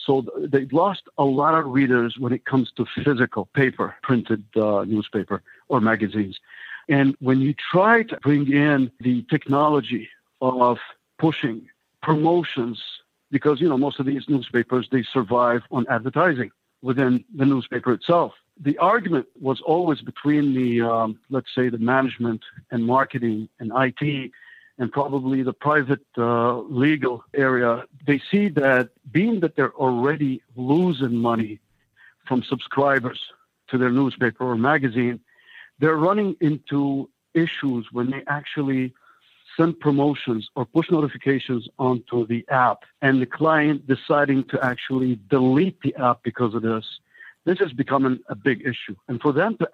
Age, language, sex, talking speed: 50-69, English, male, 145 wpm